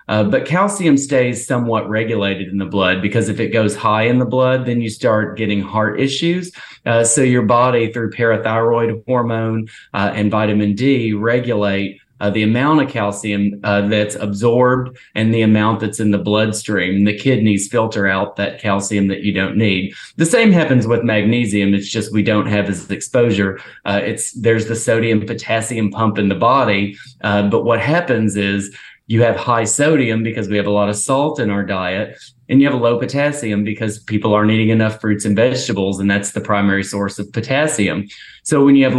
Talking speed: 195 wpm